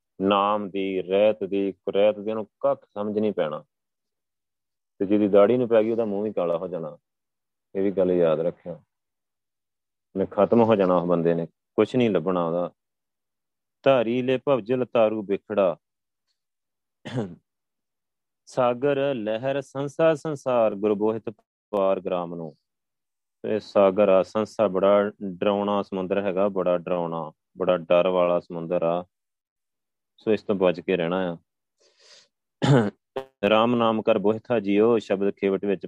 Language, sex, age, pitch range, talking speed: Punjabi, male, 30-49, 95-120 Hz, 130 wpm